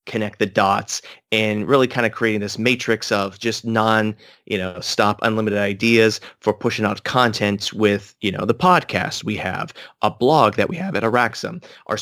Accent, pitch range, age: American, 105-130 Hz, 30-49